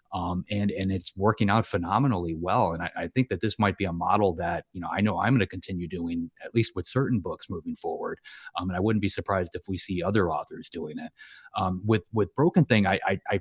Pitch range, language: 90-110 Hz, English